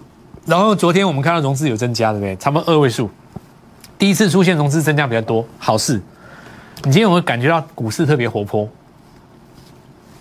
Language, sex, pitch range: Chinese, male, 120-175 Hz